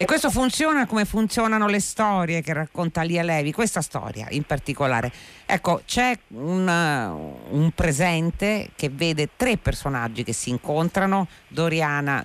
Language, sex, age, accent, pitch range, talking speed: Italian, female, 50-69, native, 135-190 Hz, 135 wpm